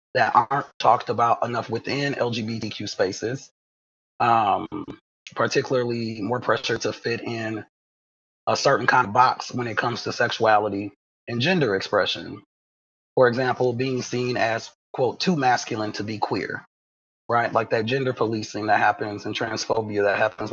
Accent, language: American, English